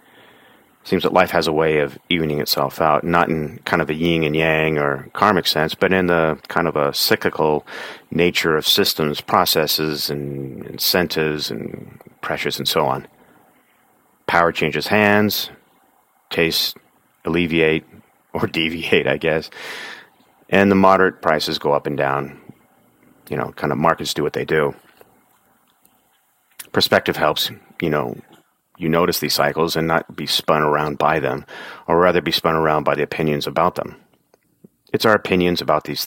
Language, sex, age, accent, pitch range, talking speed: English, male, 40-59, American, 75-85 Hz, 160 wpm